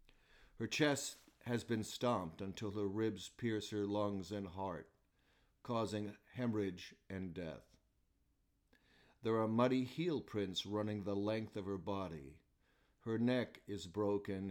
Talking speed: 130 wpm